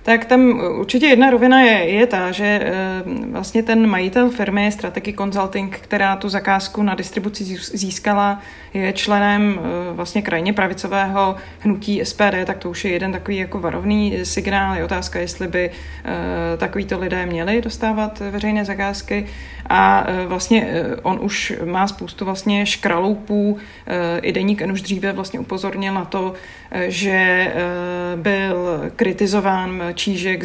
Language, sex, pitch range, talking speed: Czech, female, 180-210 Hz, 130 wpm